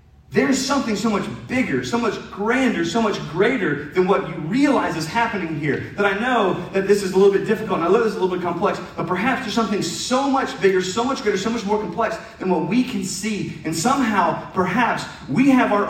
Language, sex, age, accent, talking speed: English, male, 30-49, American, 235 wpm